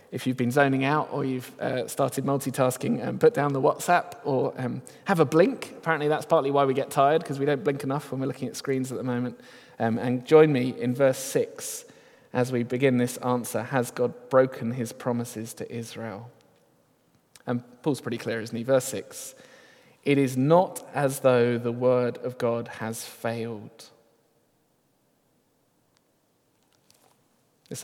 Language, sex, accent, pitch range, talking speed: English, male, British, 120-140 Hz, 170 wpm